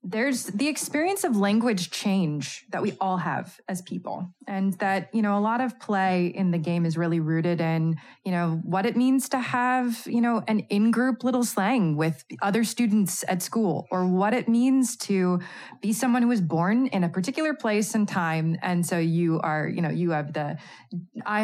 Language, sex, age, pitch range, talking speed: English, female, 20-39, 170-210 Hz, 200 wpm